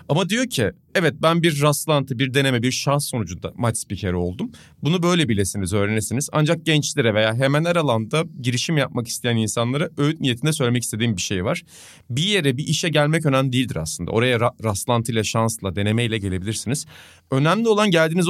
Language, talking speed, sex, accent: Turkish, 180 wpm, male, native